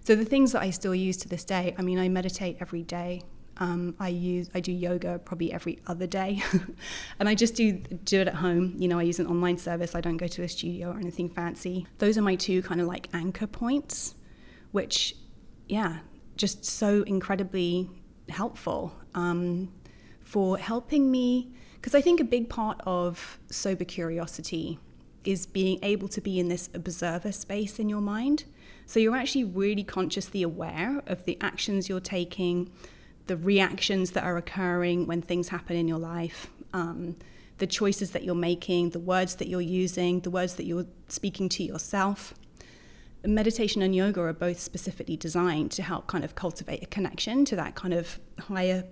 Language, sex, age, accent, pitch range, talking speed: English, female, 20-39, British, 175-200 Hz, 185 wpm